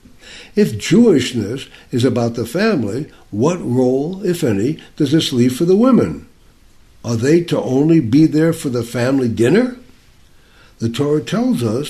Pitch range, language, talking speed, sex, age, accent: 120-170 Hz, English, 150 wpm, male, 60-79, American